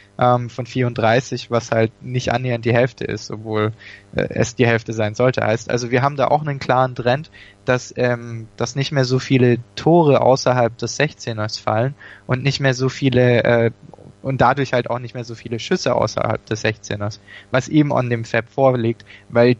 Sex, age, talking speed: male, 20-39, 185 wpm